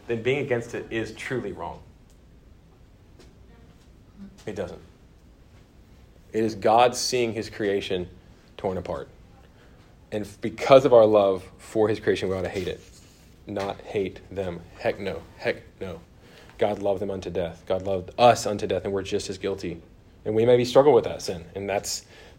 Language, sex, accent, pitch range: English, male, American, 100-125 Hz